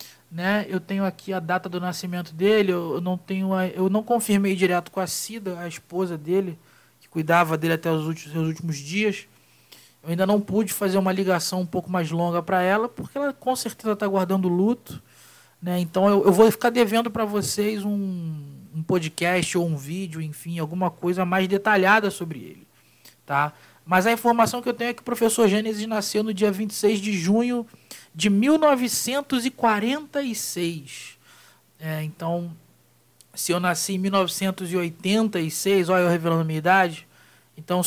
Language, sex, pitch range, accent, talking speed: Portuguese, male, 170-210 Hz, Brazilian, 170 wpm